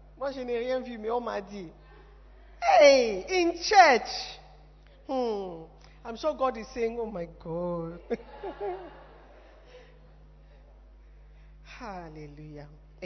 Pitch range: 165-230 Hz